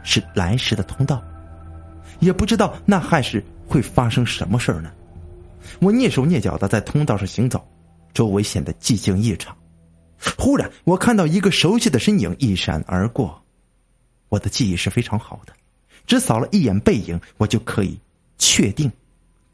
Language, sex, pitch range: Chinese, male, 85-120 Hz